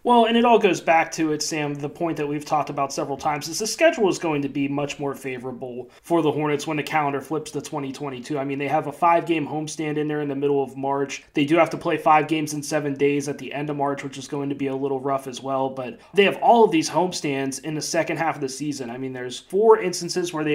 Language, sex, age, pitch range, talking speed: English, male, 20-39, 140-160 Hz, 280 wpm